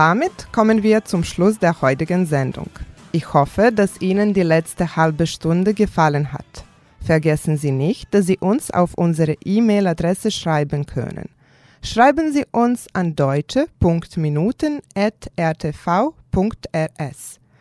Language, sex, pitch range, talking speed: German, female, 160-220 Hz, 115 wpm